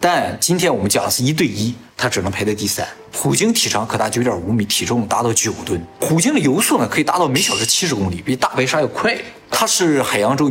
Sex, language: male, Chinese